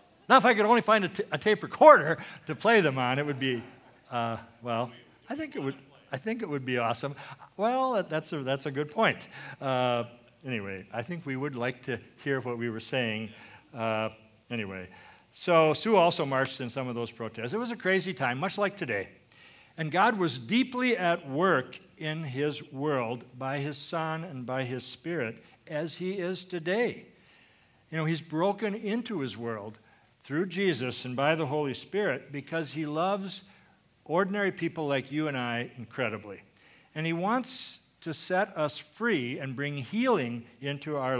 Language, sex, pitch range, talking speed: English, male, 120-175 Hz, 180 wpm